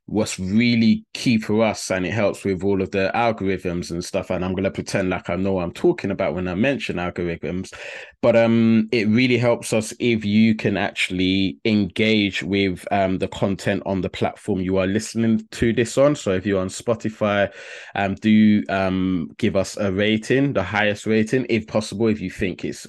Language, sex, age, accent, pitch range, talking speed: English, male, 20-39, British, 95-110 Hz, 195 wpm